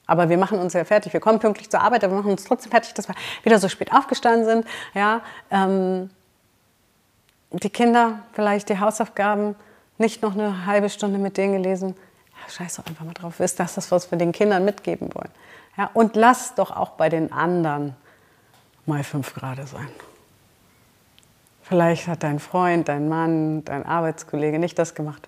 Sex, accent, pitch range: female, German, 160-210 Hz